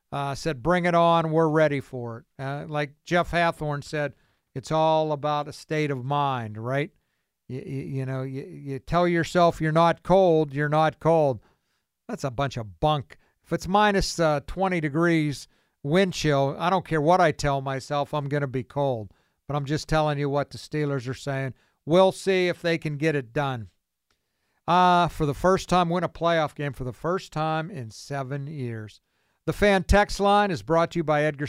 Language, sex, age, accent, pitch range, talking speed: English, male, 50-69, American, 140-180 Hz, 200 wpm